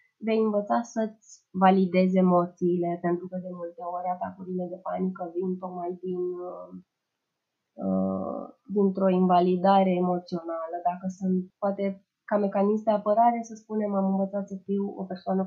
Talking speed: 135 wpm